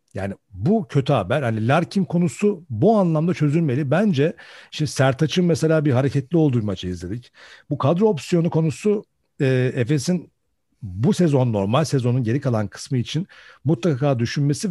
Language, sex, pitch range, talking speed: Turkish, male, 120-165 Hz, 140 wpm